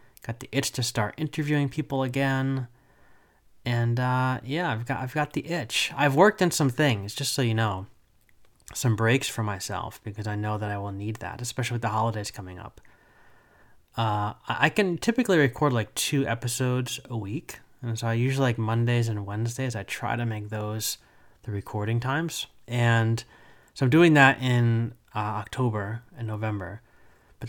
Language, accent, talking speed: English, American, 175 wpm